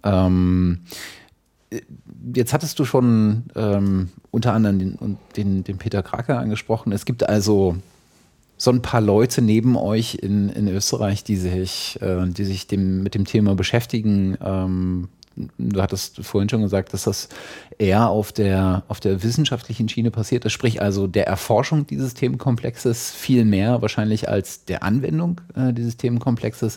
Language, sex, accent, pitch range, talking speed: German, male, German, 95-110 Hz, 150 wpm